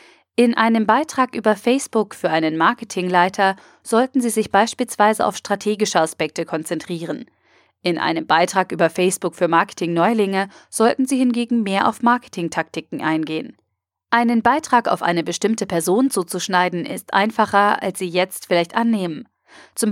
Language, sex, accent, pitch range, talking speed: German, female, German, 170-225 Hz, 135 wpm